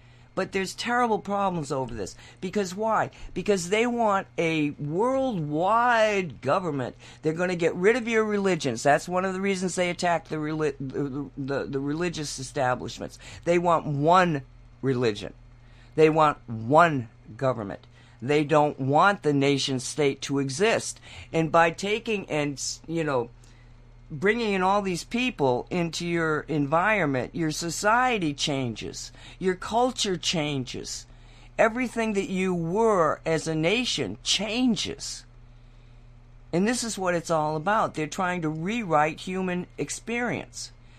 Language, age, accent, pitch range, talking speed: English, 50-69, American, 135-195 Hz, 135 wpm